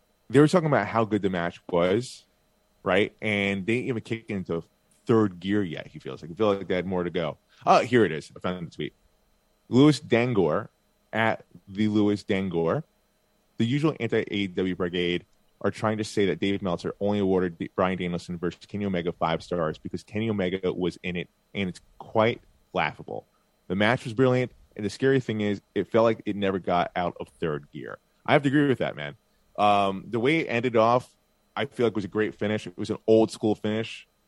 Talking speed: 210 wpm